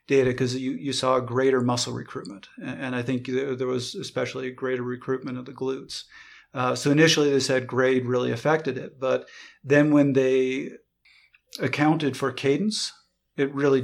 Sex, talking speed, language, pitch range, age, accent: male, 165 wpm, English, 125-140 Hz, 40-59, American